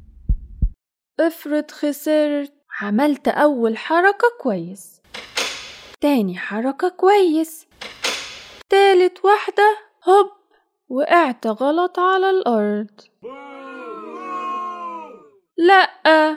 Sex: female